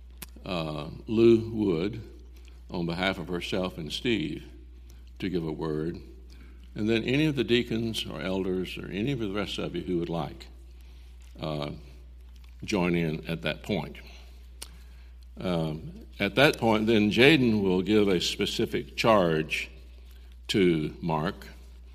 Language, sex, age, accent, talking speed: English, male, 60-79, American, 135 wpm